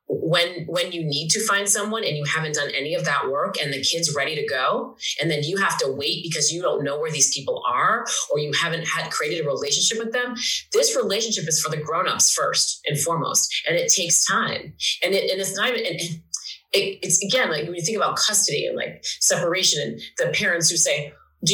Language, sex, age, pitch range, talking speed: English, female, 30-49, 180-285 Hz, 220 wpm